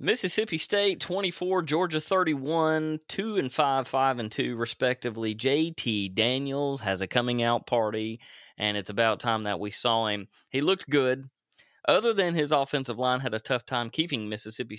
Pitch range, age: 120-160 Hz, 30-49